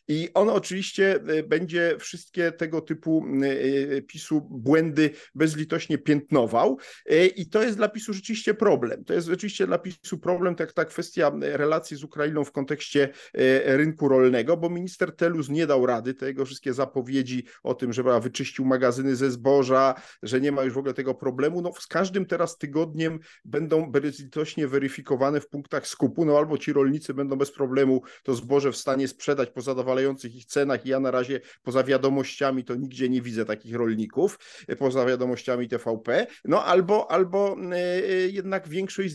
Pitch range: 135-180 Hz